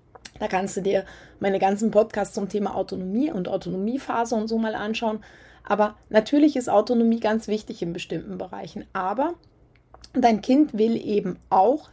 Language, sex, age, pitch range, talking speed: German, female, 30-49, 200-250 Hz, 155 wpm